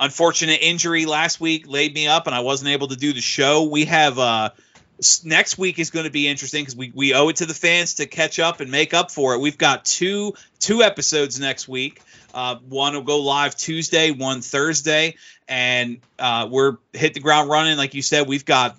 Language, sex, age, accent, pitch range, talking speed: English, male, 30-49, American, 130-155 Hz, 215 wpm